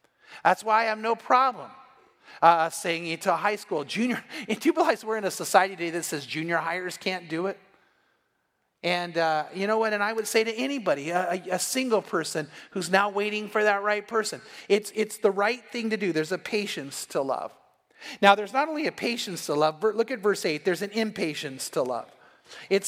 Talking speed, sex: 215 wpm, male